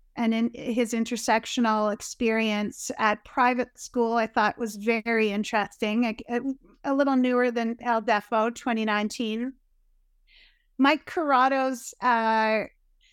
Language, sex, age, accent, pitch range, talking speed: English, female, 30-49, American, 220-250 Hz, 110 wpm